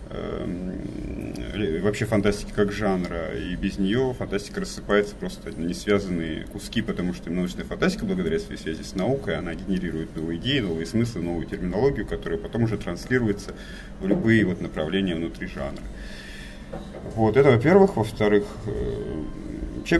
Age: 30-49